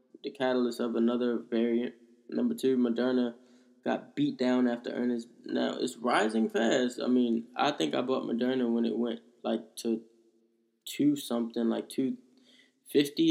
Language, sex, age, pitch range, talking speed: English, male, 10-29, 115-125 Hz, 155 wpm